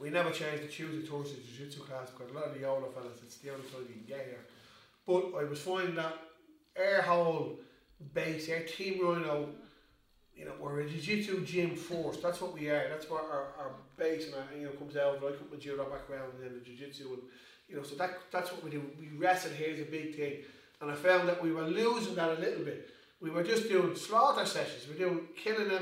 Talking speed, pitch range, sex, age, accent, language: 245 wpm, 140-170 Hz, male, 30-49, Irish, English